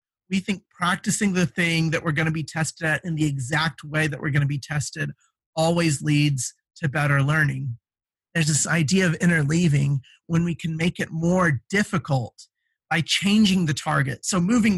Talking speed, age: 185 wpm, 30-49